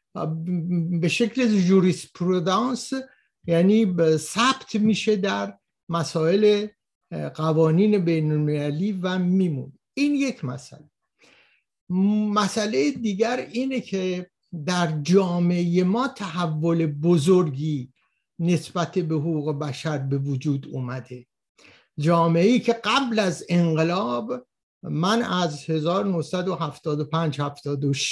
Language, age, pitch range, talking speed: Persian, 60-79, 155-210 Hz, 90 wpm